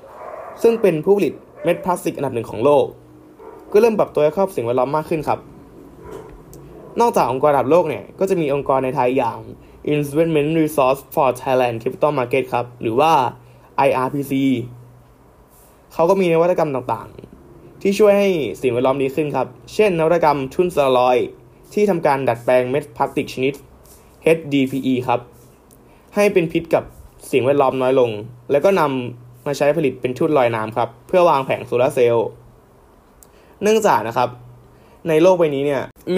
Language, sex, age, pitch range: Thai, male, 20-39, 120-175 Hz